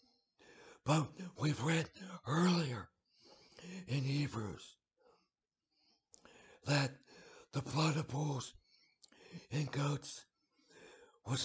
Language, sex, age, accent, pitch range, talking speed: English, male, 60-79, American, 125-160 Hz, 75 wpm